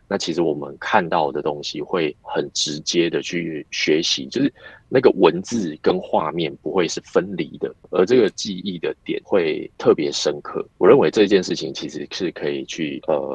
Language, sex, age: Chinese, male, 30-49